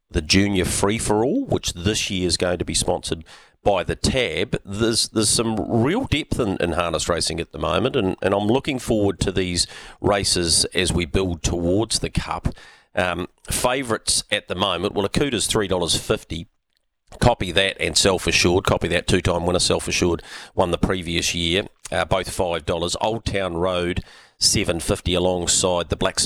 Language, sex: English, male